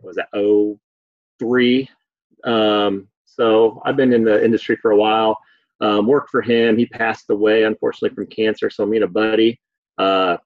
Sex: male